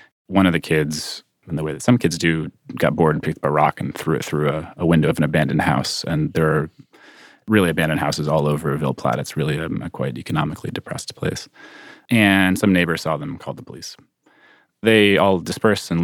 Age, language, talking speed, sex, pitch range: 30-49, English, 225 wpm, male, 80-95 Hz